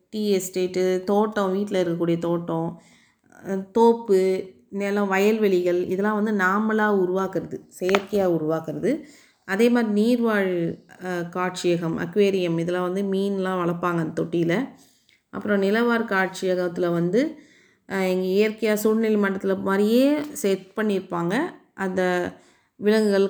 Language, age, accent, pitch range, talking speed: Tamil, 30-49, native, 180-220 Hz, 100 wpm